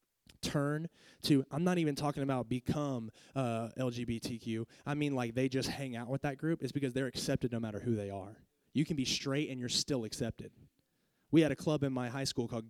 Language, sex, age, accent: English, male, 20-39, American